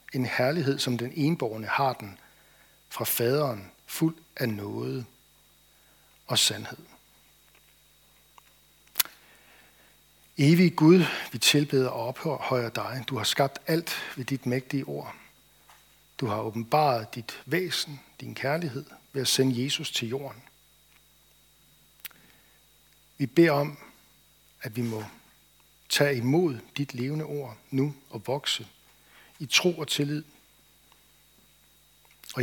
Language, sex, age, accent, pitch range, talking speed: Danish, male, 60-79, native, 120-150 Hz, 115 wpm